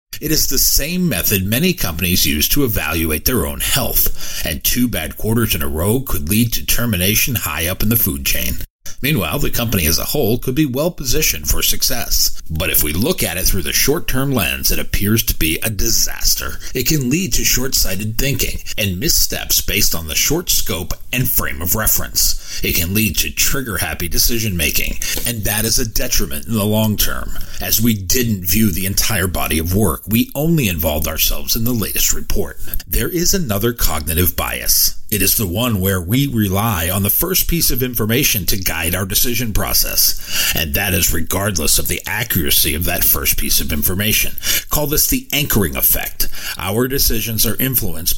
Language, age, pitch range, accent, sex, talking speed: English, 40-59, 85-120 Hz, American, male, 190 wpm